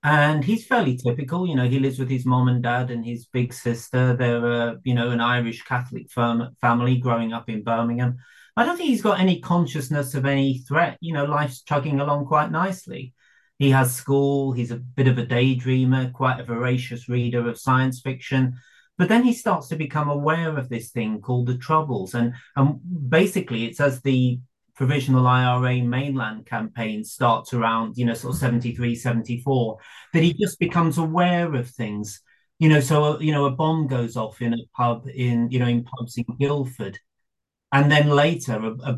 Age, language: 30-49, English